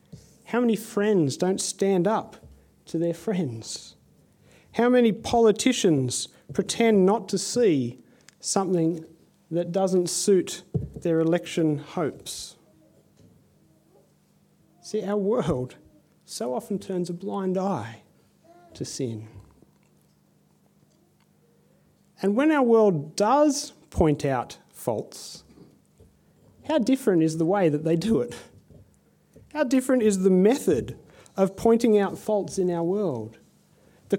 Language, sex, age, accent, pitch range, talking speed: English, male, 40-59, Australian, 165-210 Hz, 110 wpm